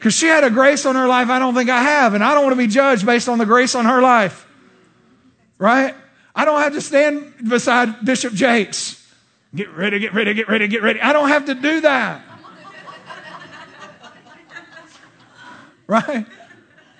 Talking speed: 180 wpm